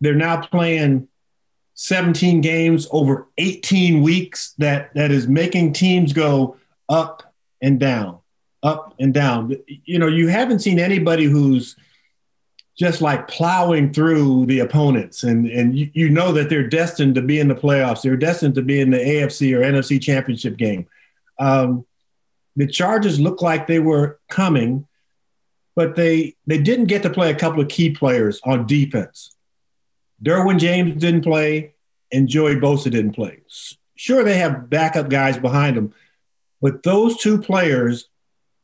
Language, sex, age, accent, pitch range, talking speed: English, male, 50-69, American, 135-170 Hz, 155 wpm